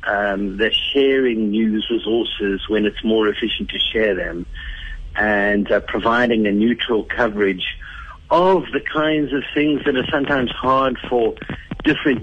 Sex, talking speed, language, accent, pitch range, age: male, 140 wpm, English, British, 105-135 Hz, 60-79